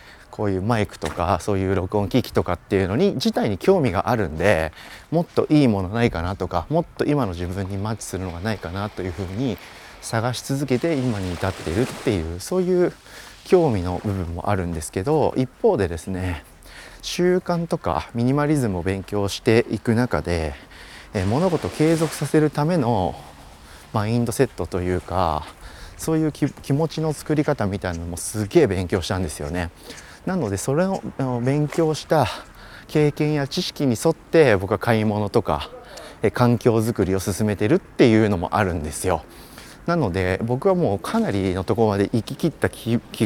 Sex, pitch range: male, 90-140 Hz